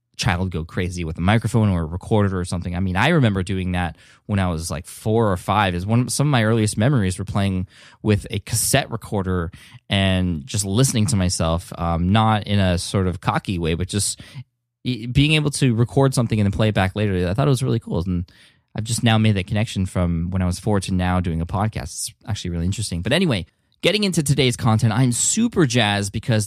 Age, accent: 20-39, American